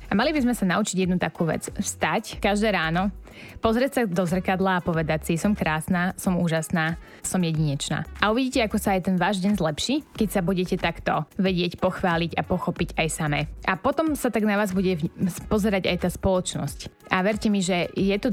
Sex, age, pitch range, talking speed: female, 20-39, 170-200 Hz, 200 wpm